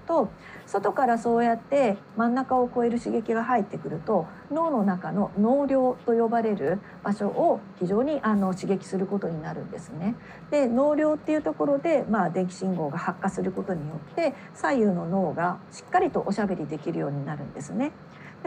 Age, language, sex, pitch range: 50-69, Japanese, female, 180-240 Hz